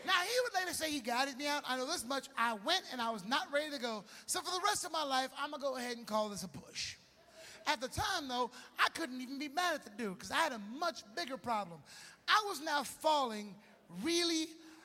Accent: American